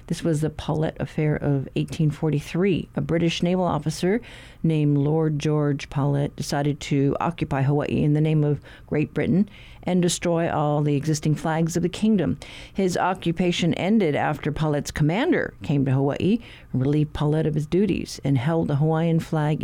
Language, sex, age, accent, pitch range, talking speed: English, female, 50-69, American, 145-180 Hz, 160 wpm